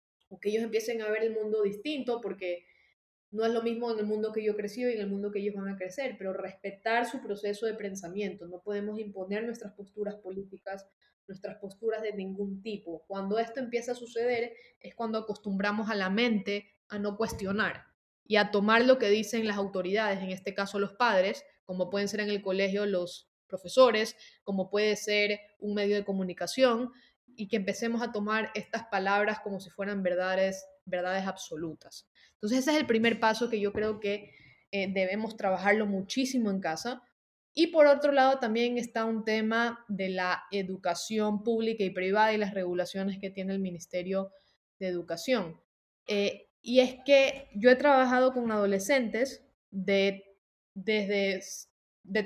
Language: Spanish